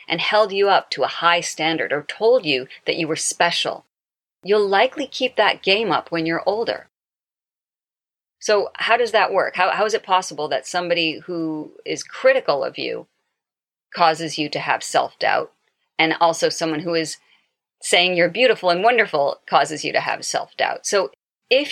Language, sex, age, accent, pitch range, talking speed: English, female, 40-59, American, 160-220 Hz, 175 wpm